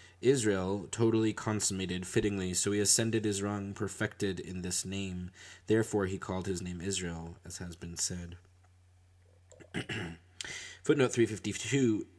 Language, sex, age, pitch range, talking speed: English, male, 20-39, 95-110 Hz, 125 wpm